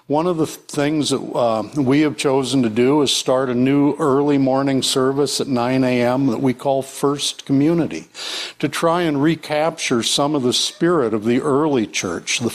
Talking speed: 185 wpm